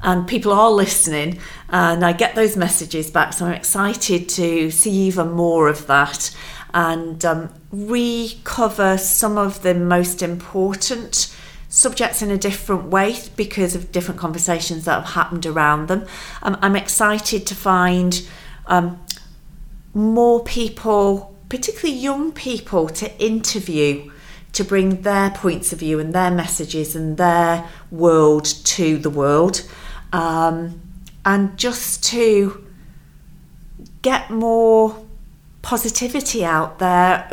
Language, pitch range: English, 165-205 Hz